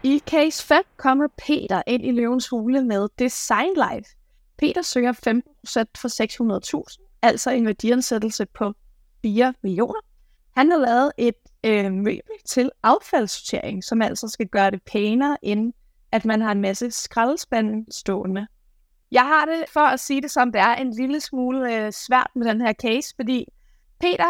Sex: female